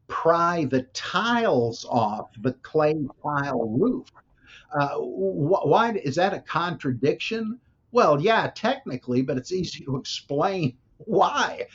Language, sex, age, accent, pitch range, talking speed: English, male, 50-69, American, 120-155 Hz, 115 wpm